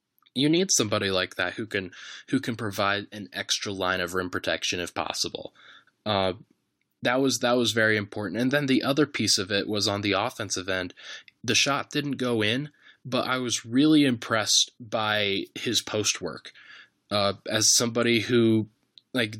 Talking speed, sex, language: 175 wpm, male, English